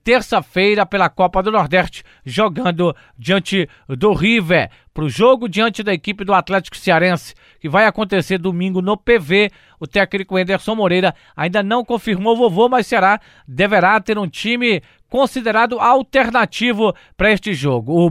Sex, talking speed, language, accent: male, 145 wpm, Portuguese, Brazilian